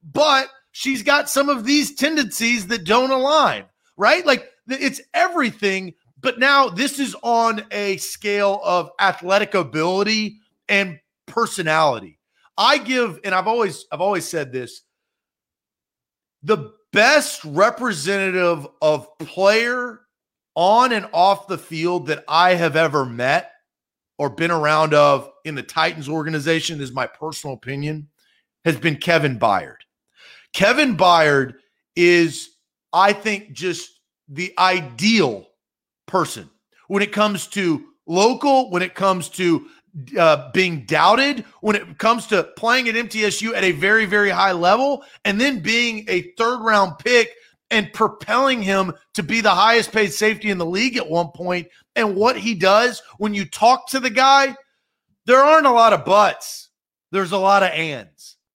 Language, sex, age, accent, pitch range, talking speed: English, male, 40-59, American, 170-240 Hz, 145 wpm